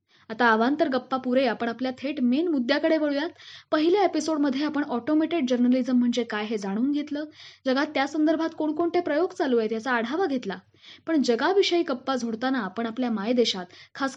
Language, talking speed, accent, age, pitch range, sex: Marathi, 155 wpm, native, 20-39, 245-325 Hz, female